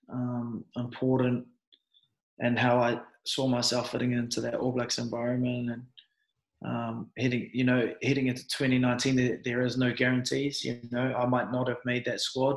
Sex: male